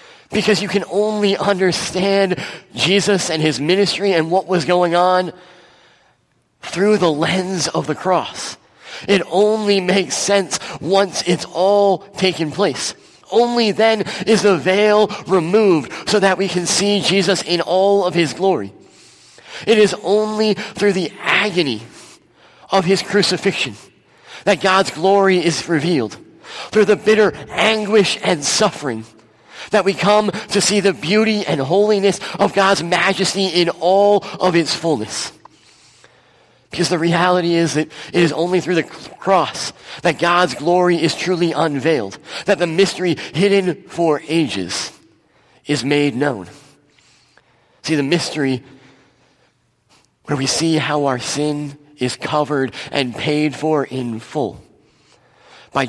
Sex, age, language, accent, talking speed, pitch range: male, 30-49, English, American, 135 wpm, 155-200 Hz